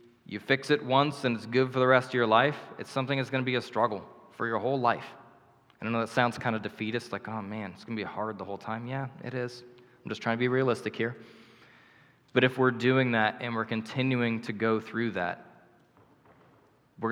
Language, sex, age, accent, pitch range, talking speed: English, male, 20-39, American, 110-130 Hz, 230 wpm